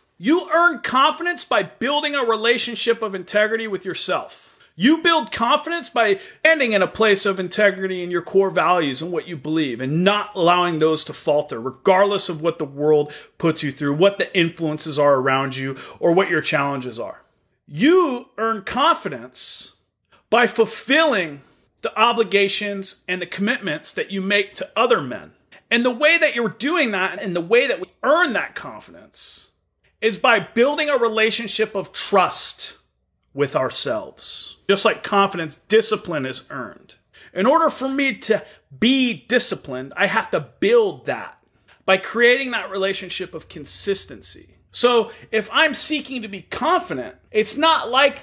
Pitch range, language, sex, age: 170-255 Hz, English, male, 40-59